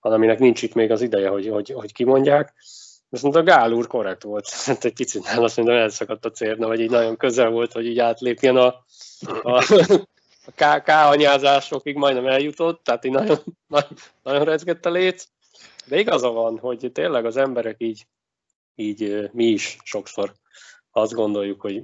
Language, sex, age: Hungarian, male, 20-39